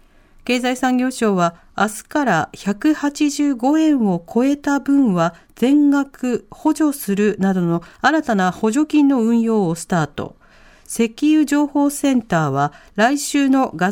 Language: Japanese